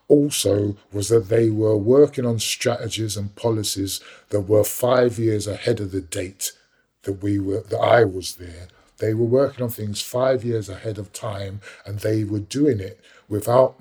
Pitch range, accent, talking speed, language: 100-120 Hz, British, 180 wpm, English